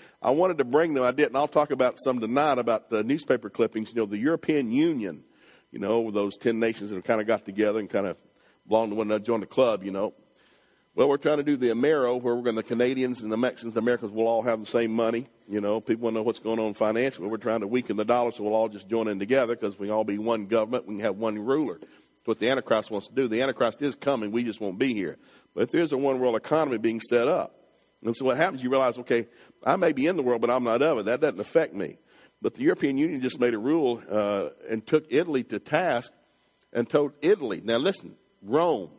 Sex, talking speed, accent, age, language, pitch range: male, 265 wpm, American, 50-69, English, 110-145 Hz